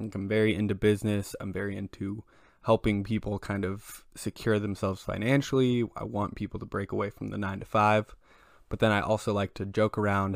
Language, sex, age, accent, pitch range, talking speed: English, male, 20-39, American, 100-115 Hz, 190 wpm